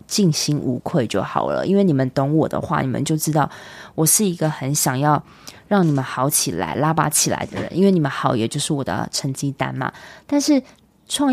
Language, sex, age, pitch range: Chinese, female, 20-39, 140-190 Hz